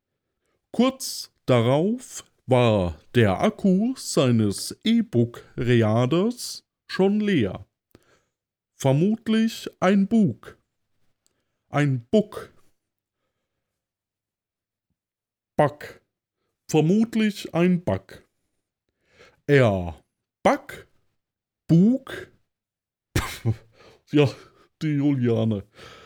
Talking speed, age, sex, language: 60 wpm, 50-69, male, German